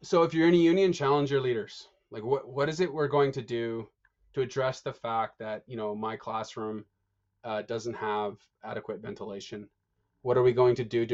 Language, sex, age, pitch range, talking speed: English, male, 20-39, 110-135 Hz, 210 wpm